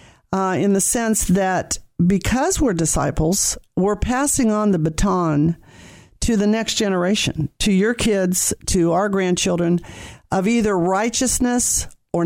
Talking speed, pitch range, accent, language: 130 wpm, 175-225 Hz, American, English